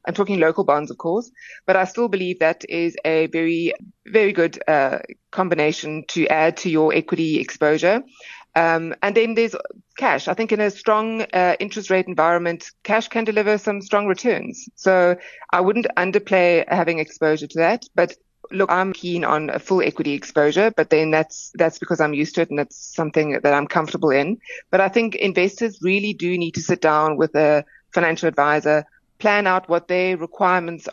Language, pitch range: English, 155-195 Hz